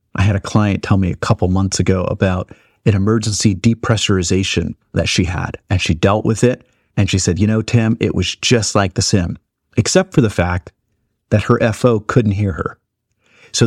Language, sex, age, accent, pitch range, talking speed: English, male, 40-59, American, 95-115 Hz, 200 wpm